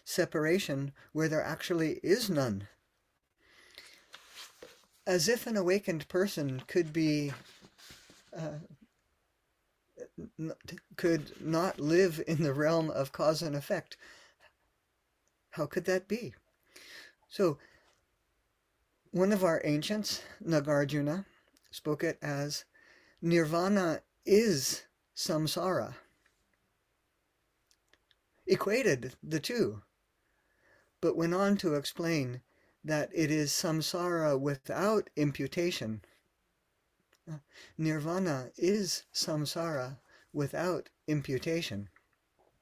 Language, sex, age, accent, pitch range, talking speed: English, male, 50-69, American, 145-175 Hz, 85 wpm